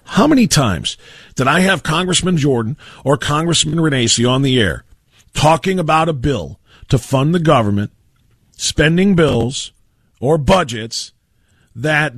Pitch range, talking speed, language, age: 125-170 Hz, 135 wpm, English, 40-59